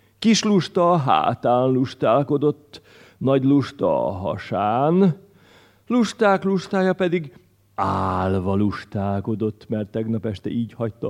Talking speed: 95 wpm